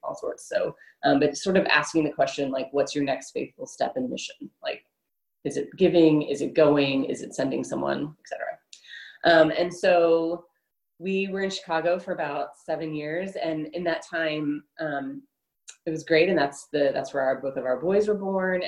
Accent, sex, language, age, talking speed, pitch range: American, female, English, 30-49, 195 wpm, 140-170 Hz